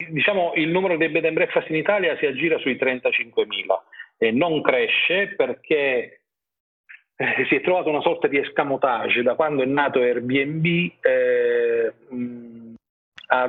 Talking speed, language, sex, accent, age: 140 wpm, Italian, male, native, 40-59